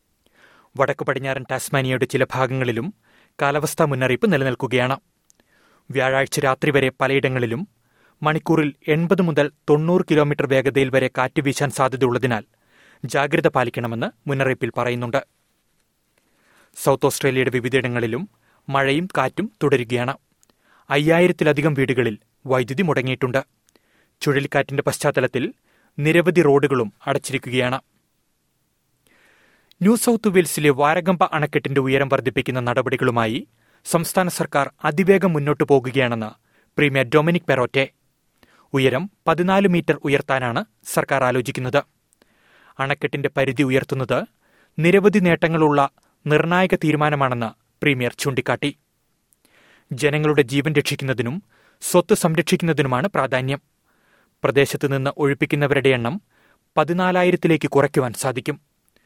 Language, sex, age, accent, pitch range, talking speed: Malayalam, male, 30-49, native, 130-155 Hz, 85 wpm